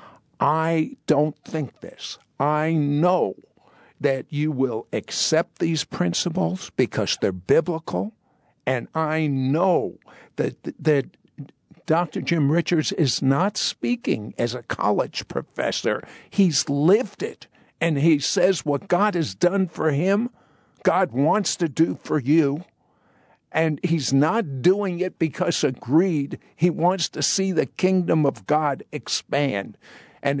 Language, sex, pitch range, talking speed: English, male, 145-185 Hz, 130 wpm